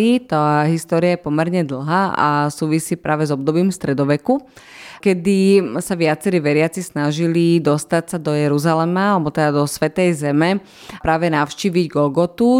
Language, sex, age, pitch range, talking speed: Slovak, female, 20-39, 150-175 Hz, 135 wpm